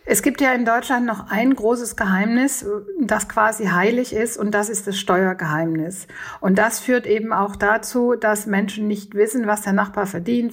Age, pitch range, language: 50-69, 195-225 Hz, German